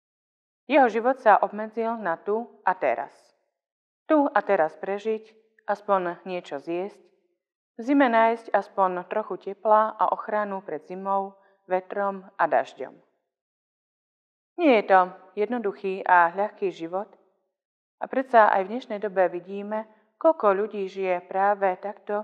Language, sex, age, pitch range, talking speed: Slovak, female, 30-49, 185-220 Hz, 125 wpm